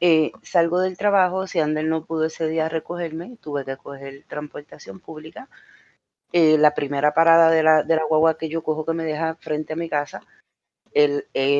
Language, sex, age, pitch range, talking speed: Spanish, female, 30-49, 155-190 Hz, 180 wpm